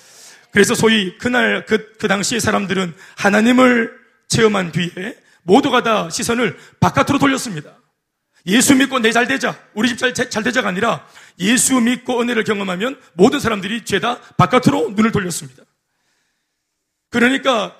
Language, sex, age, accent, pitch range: Korean, male, 30-49, native, 190-250 Hz